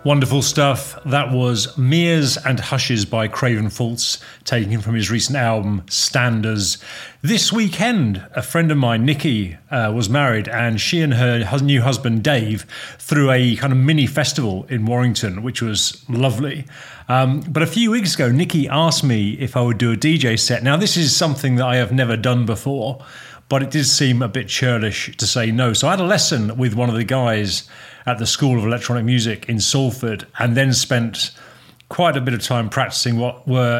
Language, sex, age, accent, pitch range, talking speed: English, male, 40-59, British, 115-140 Hz, 195 wpm